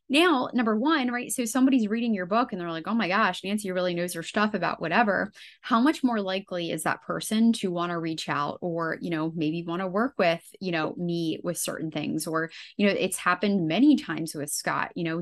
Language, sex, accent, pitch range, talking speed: English, female, American, 170-230 Hz, 235 wpm